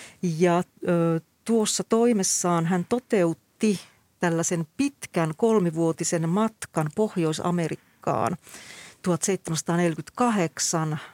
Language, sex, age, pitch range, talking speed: Finnish, female, 40-59, 165-205 Hz, 60 wpm